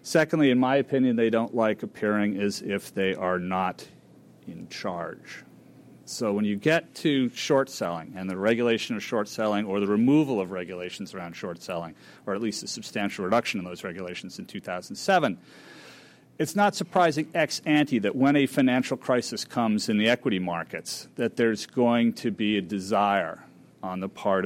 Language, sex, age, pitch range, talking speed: English, male, 40-59, 100-135 Hz, 165 wpm